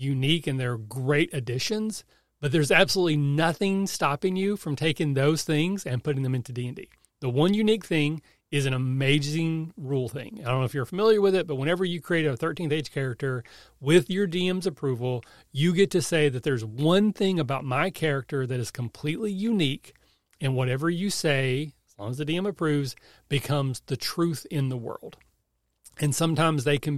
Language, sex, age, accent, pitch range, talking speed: English, male, 40-59, American, 135-165 Hz, 185 wpm